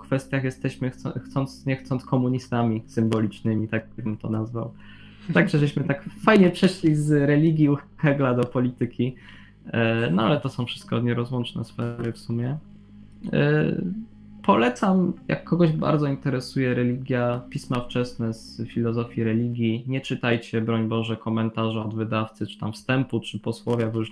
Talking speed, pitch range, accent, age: 140 wpm, 115-155 Hz, native, 20-39